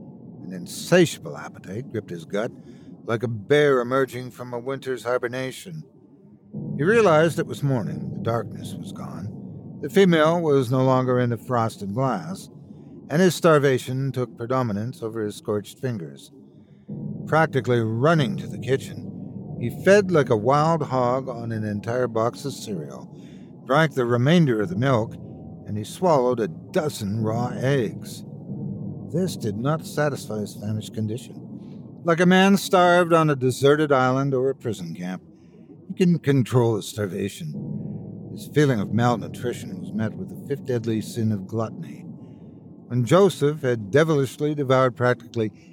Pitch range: 115-160 Hz